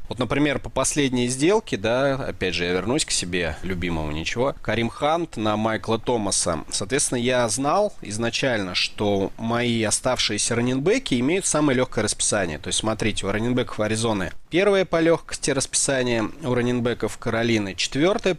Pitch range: 100-130 Hz